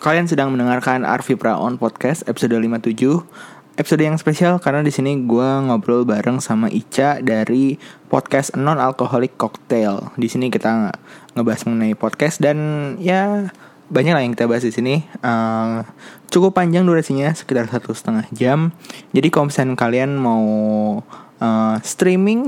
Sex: male